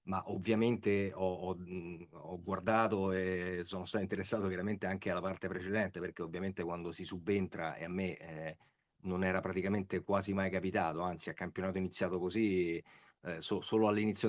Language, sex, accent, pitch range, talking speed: Italian, male, native, 95-110 Hz, 160 wpm